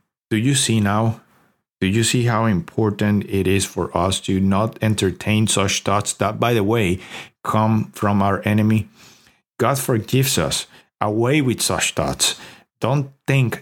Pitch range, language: 95-115 Hz, English